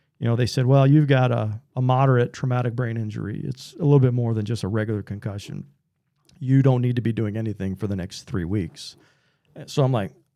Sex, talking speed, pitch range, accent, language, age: male, 220 wpm, 105-135 Hz, American, English, 40-59